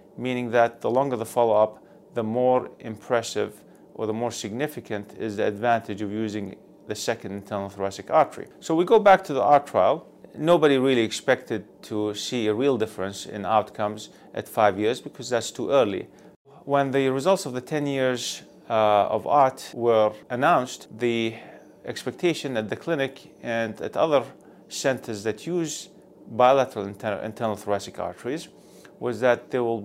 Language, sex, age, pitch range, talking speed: English, male, 30-49, 105-130 Hz, 160 wpm